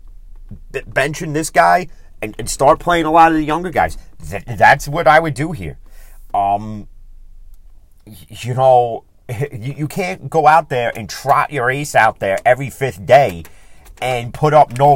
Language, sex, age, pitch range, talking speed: English, male, 30-49, 110-155 Hz, 155 wpm